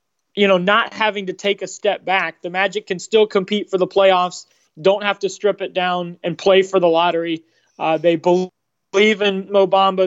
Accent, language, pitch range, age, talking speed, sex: American, English, 170-190 Hz, 20-39, 195 wpm, male